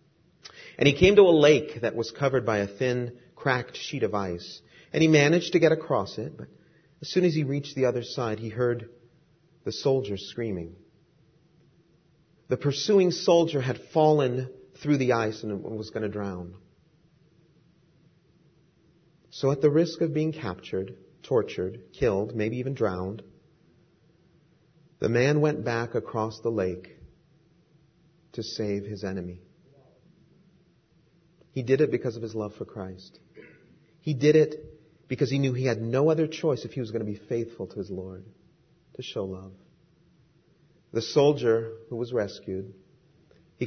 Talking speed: 155 wpm